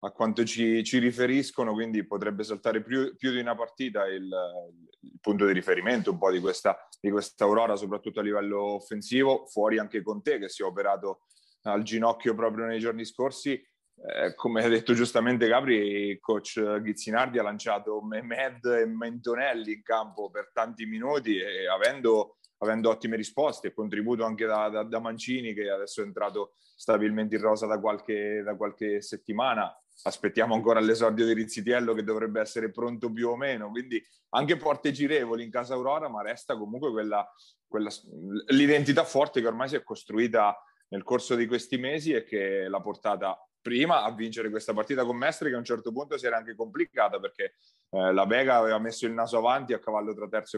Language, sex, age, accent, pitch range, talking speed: Italian, male, 30-49, native, 105-125 Hz, 185 wpm